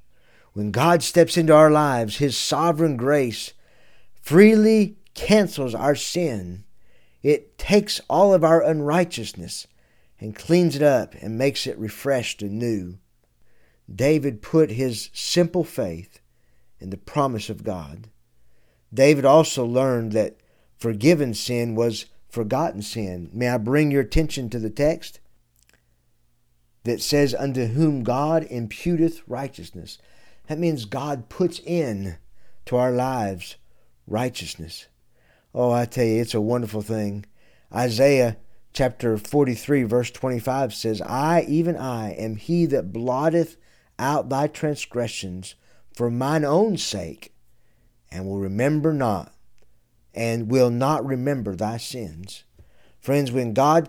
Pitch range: 110-150 Hz